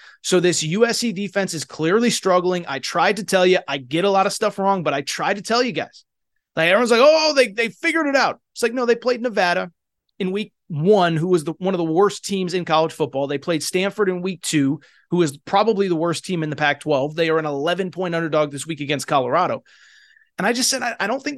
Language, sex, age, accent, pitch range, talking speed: English, male, 30-49, American, 160-230 Hz, 245 wpm